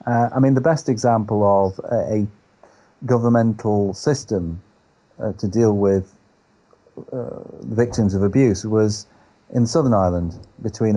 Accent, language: British, English